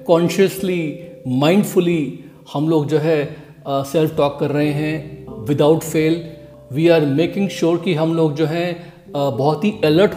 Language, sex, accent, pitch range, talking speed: Hindi, male, native, 155-215 Hz, 160 wpm